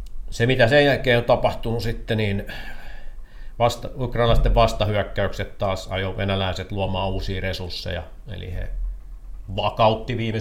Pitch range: 85-110 Hz